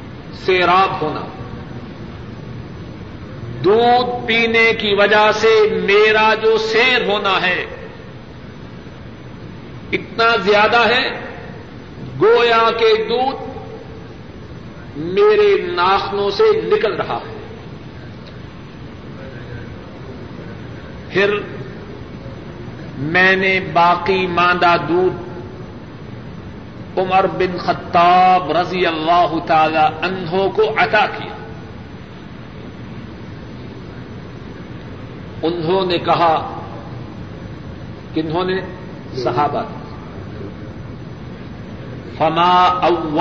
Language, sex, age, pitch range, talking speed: Urdu, male, 50-69, 170-210 Hz, 65 wpm